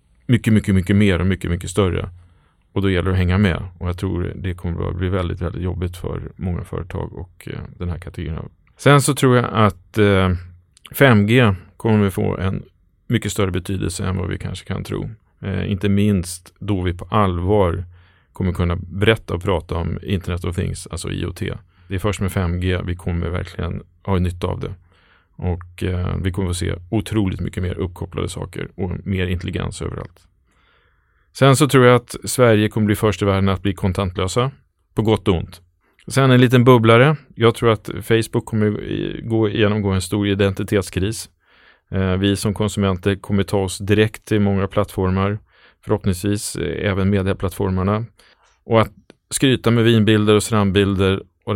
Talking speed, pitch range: 180 wpm, 90-105 Hz